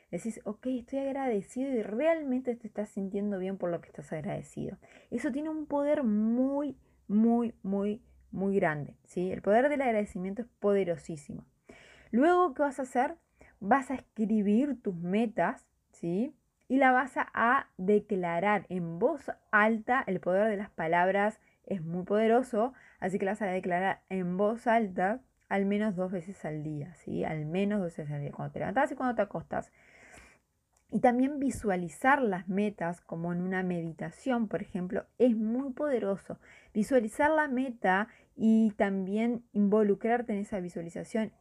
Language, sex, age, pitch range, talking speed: Spanish, female, 20-39, 185-235 Hz, 160 wpm